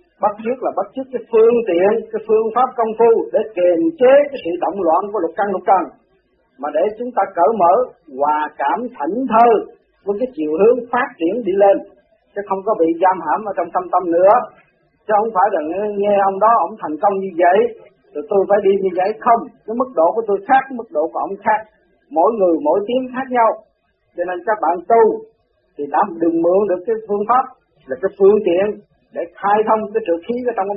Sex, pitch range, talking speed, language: male, 190-240 Hz, 225 wpm, Vietnamese